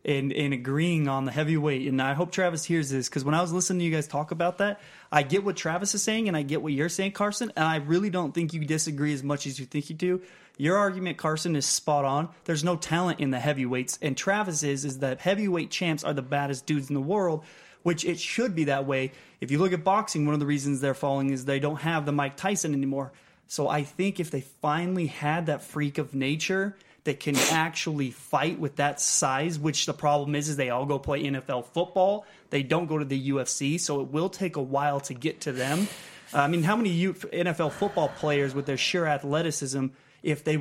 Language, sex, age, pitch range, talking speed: English, male, 30-49, 140-170 Hz, 235 wpm